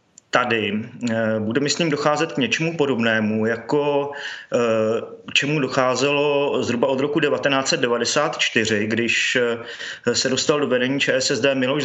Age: 30-49